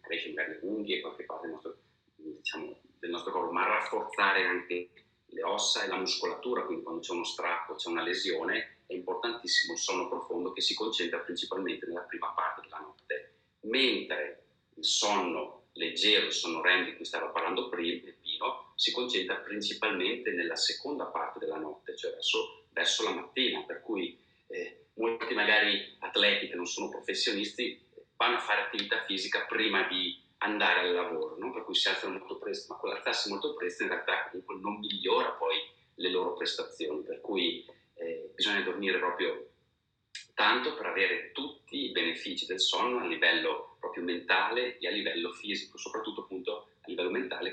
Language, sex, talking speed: Italian, male, 170 wpm